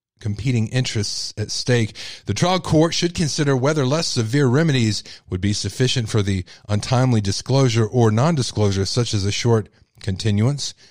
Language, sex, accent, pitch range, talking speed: English, male, American, 105-130 Hz, 150 wpm